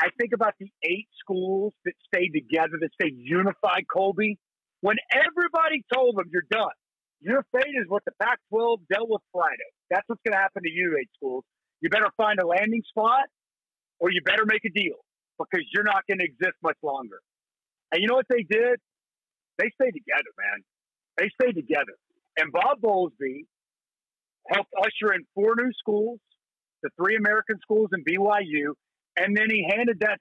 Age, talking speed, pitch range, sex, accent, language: 50-69, 180 wpm, 190-235 Hz, male, American, English